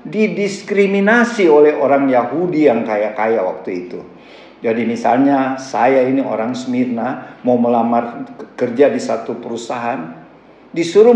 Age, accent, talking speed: 50-69, native, 115 wpm